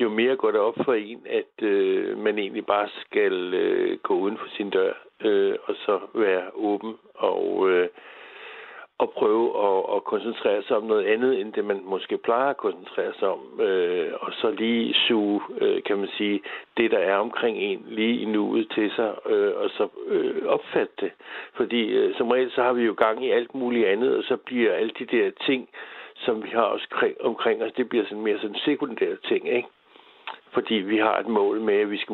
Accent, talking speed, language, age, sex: native, 210 wpm, Danish, 60-79, male